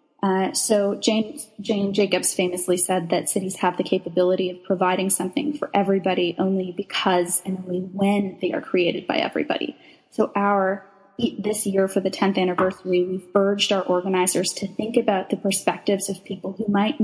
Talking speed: 175 wpm